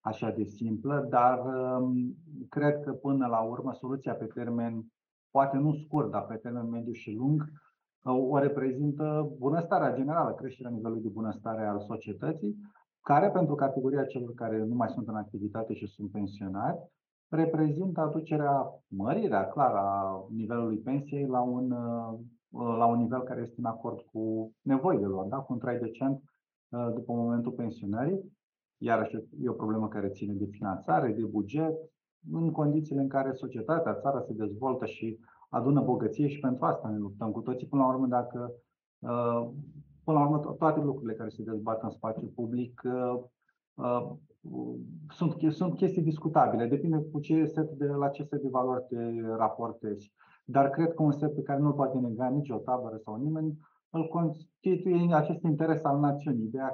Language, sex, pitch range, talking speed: Romanian, male, 115-145 Hz, 165 wpm